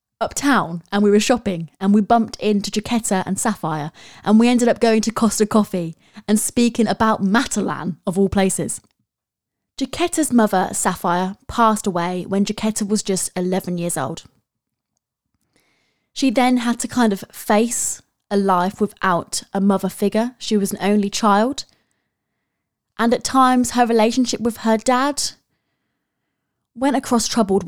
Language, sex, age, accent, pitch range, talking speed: English, female, 20-39, British, 185-230 Hz, 145 wpm